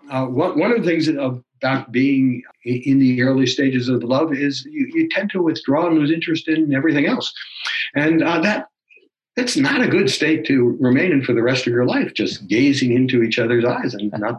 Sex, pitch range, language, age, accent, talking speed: male, 125-180 Hz, English, 60-79, American, 210 wpm